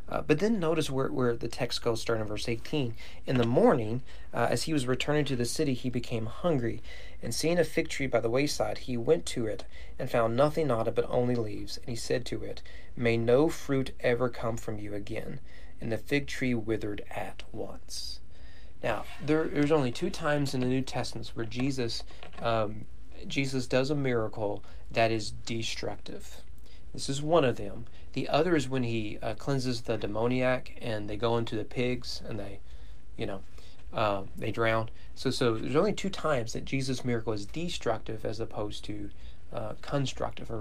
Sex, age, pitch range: male, 40-59, 110-135 Hz